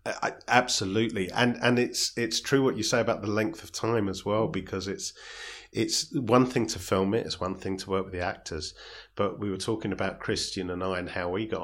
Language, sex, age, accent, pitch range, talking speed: English, male, 40-59, British, 85-115 Hz, 225 wpm